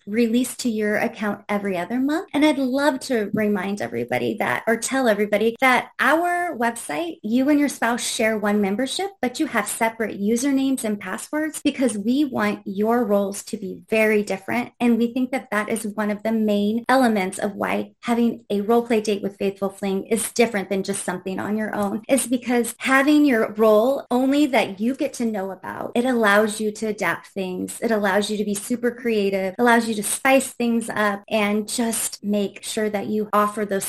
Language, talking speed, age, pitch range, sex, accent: English, 195 wpm, 20-39, 205-255 Hz, female, American